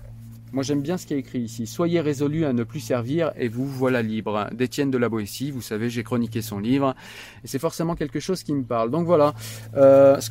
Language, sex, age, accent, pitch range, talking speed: French, male, 30-49, French, 115-140 Hz, 250 wpm